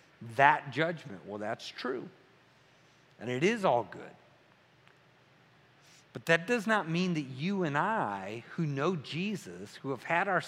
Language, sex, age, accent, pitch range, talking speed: English, male, 50-69, American, 160-215 Hz, 150 wpm